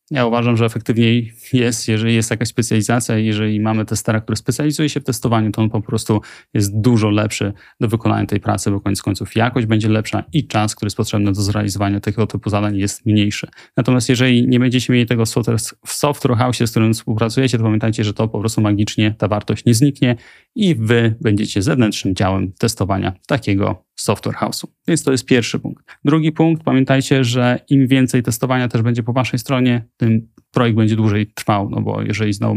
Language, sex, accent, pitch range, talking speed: Polish, male, native, 110-125 Hz, 190 wpm